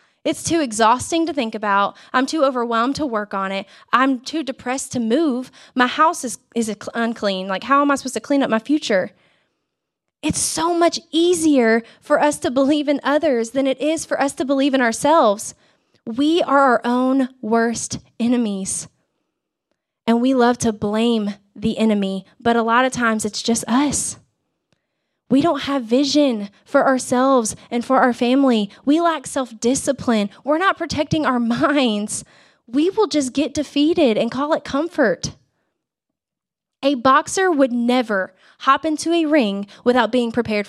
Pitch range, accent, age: 225-280 Hz, American, 20-39